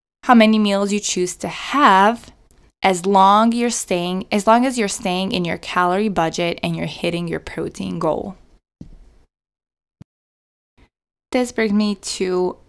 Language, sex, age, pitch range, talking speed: English, female, 20-39, 165-210 Hz, 140 wpm